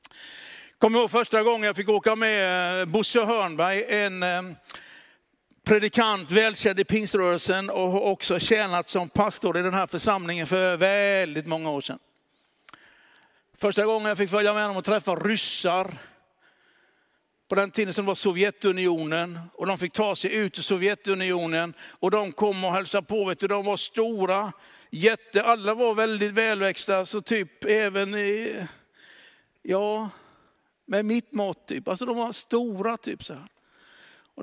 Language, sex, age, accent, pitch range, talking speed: Swedish, male, 60-79, native, 190-230 Hz, 150 wpm